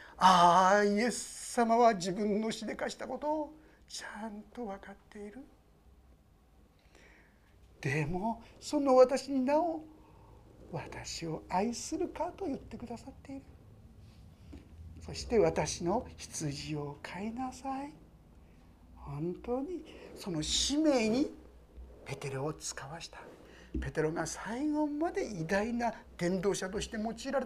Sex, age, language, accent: male, 60-79, Japanese, native